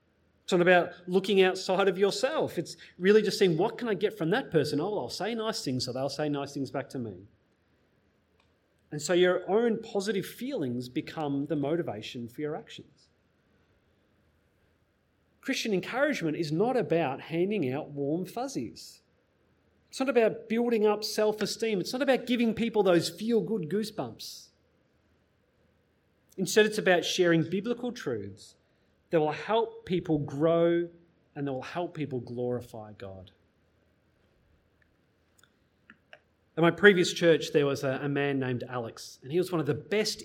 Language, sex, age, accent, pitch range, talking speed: English, male, 30-49, Australian, 130-195 Hz, 150 wpm